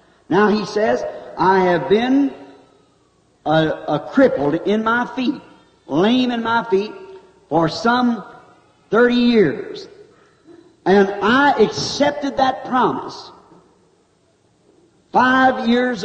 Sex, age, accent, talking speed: male, 60-79, American, 100 wpm